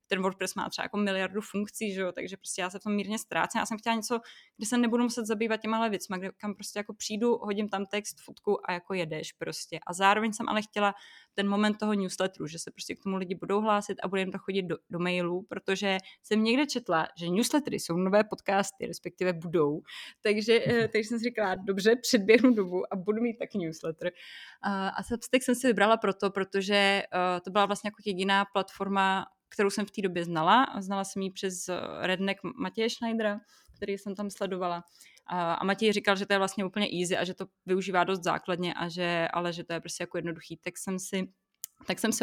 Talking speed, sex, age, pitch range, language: 215 wpm, female, 20-39, 185-220 Hz, Czech